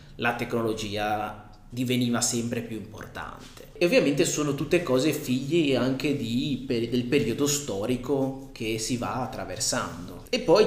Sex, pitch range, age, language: male, 115-135 Hz, 20-39, Italian